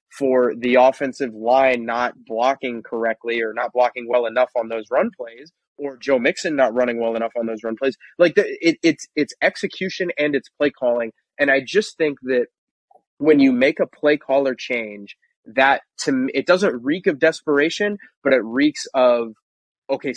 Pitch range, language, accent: 125-155 Hz, English, American